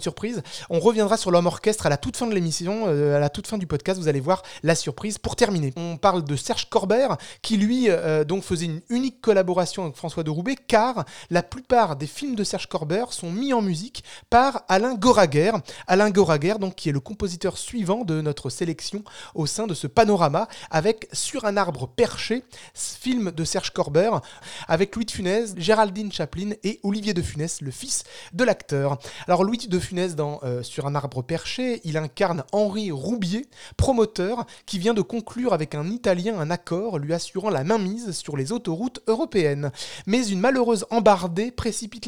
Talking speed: 190 wpm